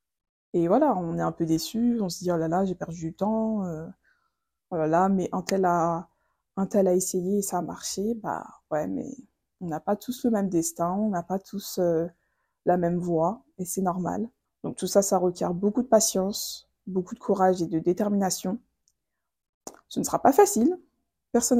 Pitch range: 175-210 Hz